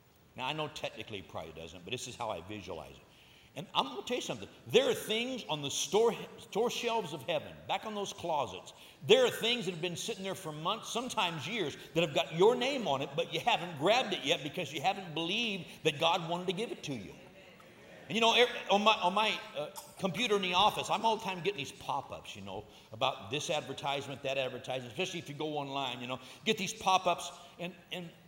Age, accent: 60-79, American